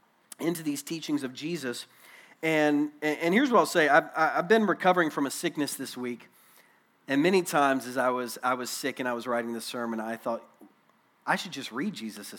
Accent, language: American, English